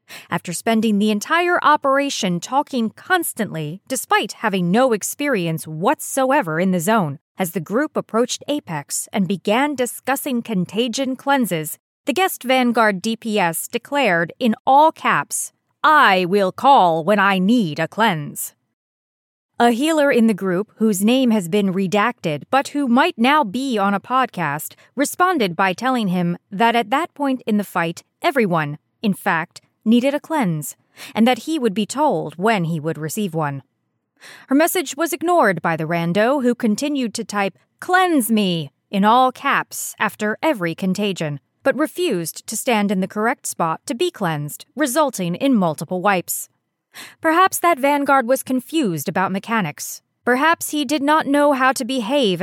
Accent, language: American, English